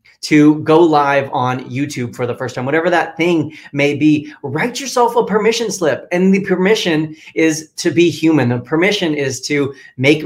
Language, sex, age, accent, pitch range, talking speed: English, male, 30-49, American, 135-170 Hz, 180 wpm